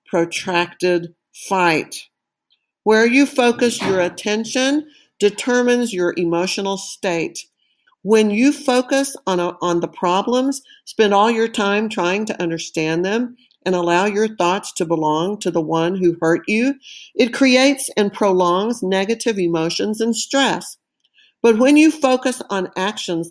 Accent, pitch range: American, 180-235 Hz